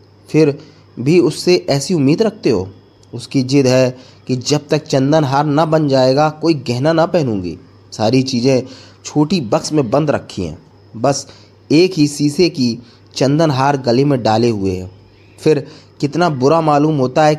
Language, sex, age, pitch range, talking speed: Hindi, male, 20-39, 105-150 Hz, 165 wpm